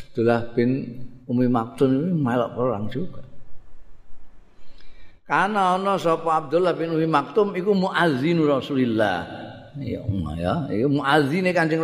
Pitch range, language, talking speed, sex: 95-120 Hz, Indonesian, 160 wpm, male